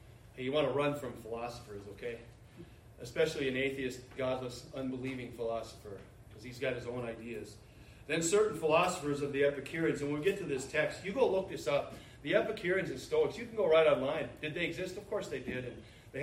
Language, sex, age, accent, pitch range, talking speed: English, male, 40-59, American, 135-200 Hz, 205 wpm